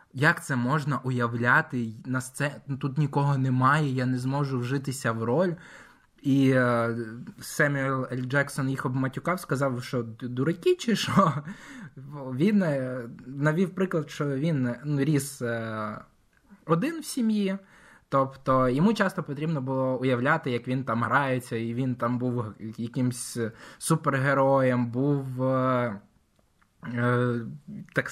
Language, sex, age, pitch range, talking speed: Ukrainian, male, 20-39, 125-150 Hz, 110 wpm